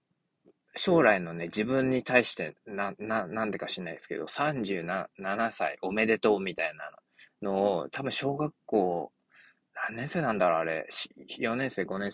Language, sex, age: Japanese, male, 20-39